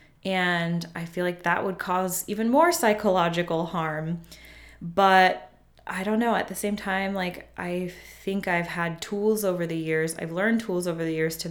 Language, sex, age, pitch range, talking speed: English, female, 20-39, 170-195 Hz, 180 wpm